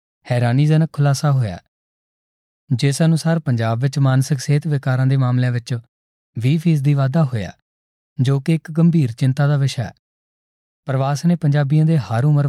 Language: Punjabi